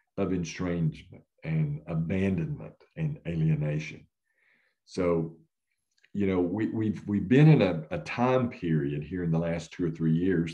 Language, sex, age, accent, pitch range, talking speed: English, male, 50-69, American, 80-125 Hz, 150 wpm